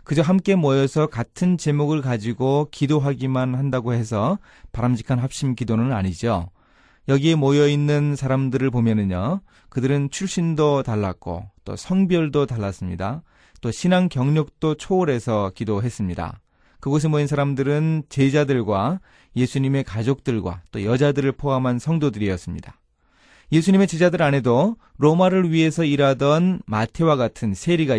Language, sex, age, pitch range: Korean, male, 30-49, 110-165 Hz